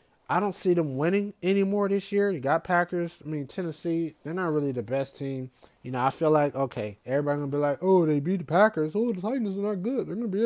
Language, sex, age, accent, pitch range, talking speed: English, male, 20-39, American, 145-195 Hz, 265 wpm